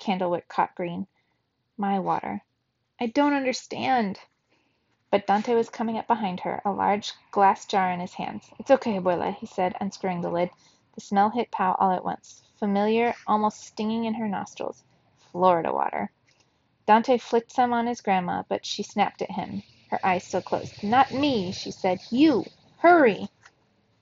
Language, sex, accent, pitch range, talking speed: English, female, American, 185-225 Hz, 165 wpm